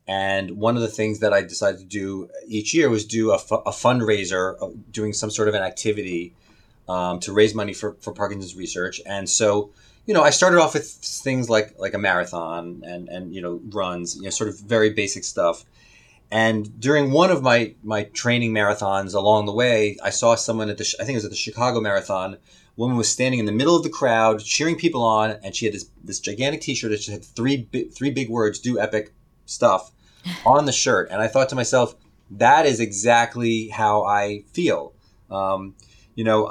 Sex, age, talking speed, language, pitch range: male, 30-49, 210 wpm, English, 105-120 Hz